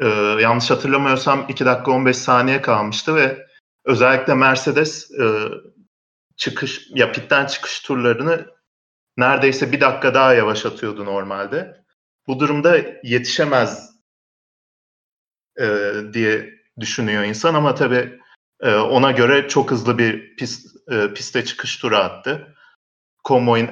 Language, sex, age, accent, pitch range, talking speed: Turkish, male, 40-59, native, 110-135 Hz, 115 wpm